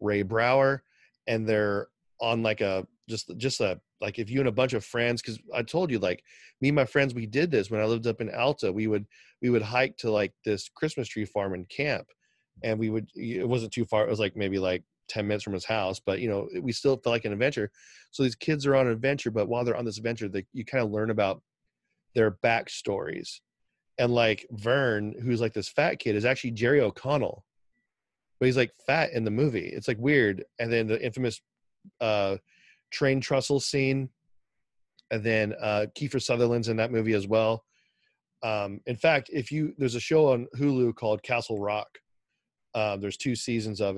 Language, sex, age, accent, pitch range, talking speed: English, male, 30-49, American, 105-125 Hz, 210 wpm